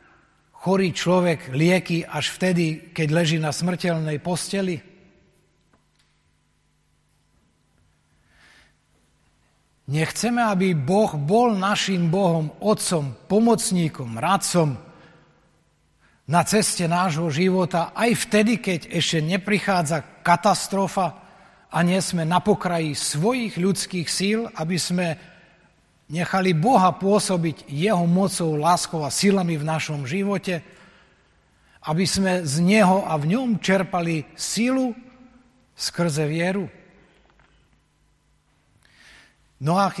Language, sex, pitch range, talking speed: Slovak, male, 150-190 Hz, 95 wpm